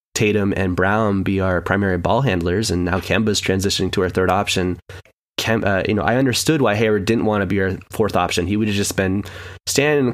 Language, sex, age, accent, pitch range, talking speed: English, male, 20-39, American, 95-120 Hz, 230 wpm